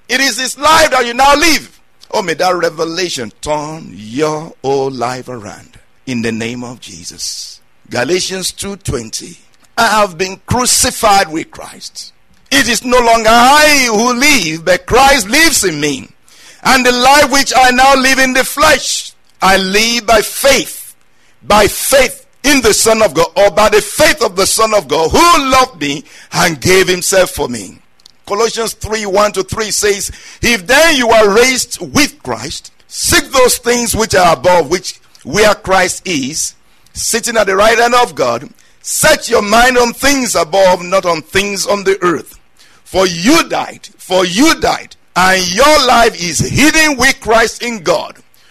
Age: 50-69